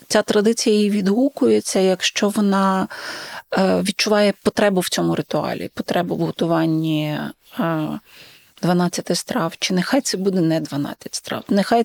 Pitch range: 180-220 Hz